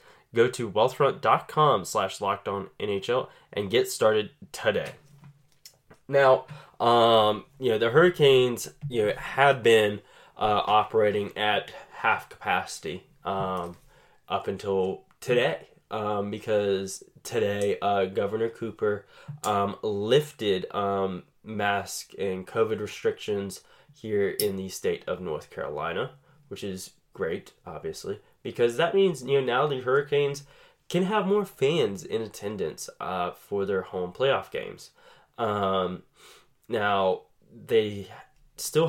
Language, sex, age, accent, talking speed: English, male, 10-29, American, 115 wpm